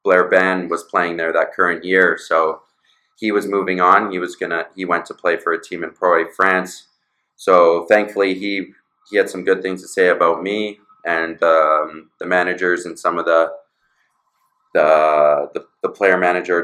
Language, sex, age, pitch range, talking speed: English, male, 20-39, 85-105 Hz, 185 wpm